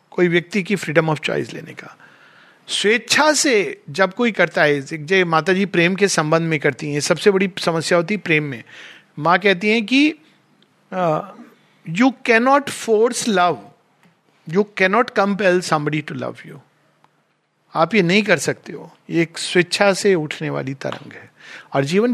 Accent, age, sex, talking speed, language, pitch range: native, 50-69, male, 170 wpm, Hindi, 155-200 Hz